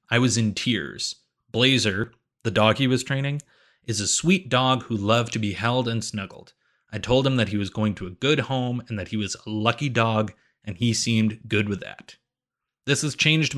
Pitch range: 110-135 Hz